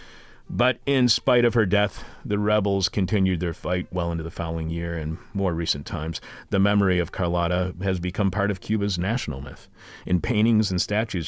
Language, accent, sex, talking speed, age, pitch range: English, American, male, 185 wpm, 40-59, 90-110 Hz